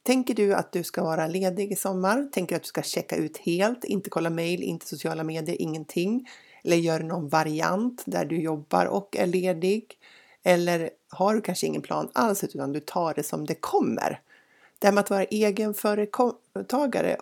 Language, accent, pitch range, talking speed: Swedish, native, 160-210 Hz, 190 wpm